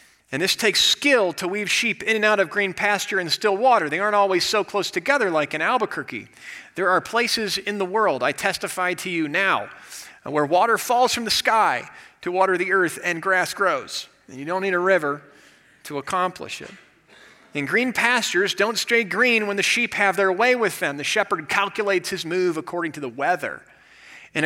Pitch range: 130-200 Hz